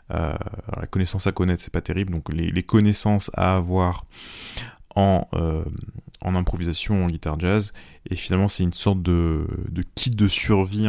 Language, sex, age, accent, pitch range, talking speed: French, male, 30-49, French, 85-105 Hz, 175 wpm